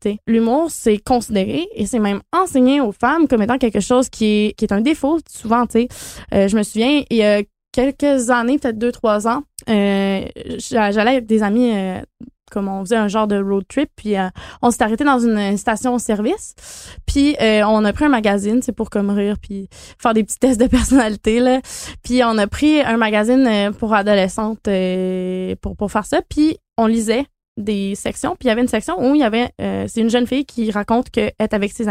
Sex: female